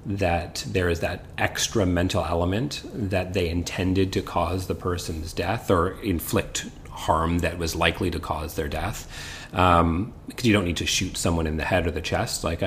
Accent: American